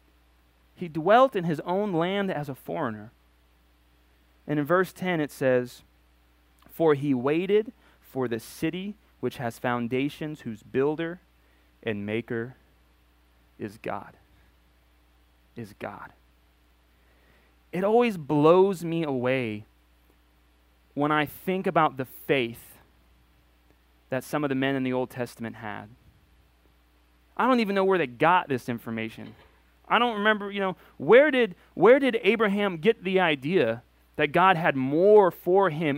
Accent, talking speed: American, 135 wpm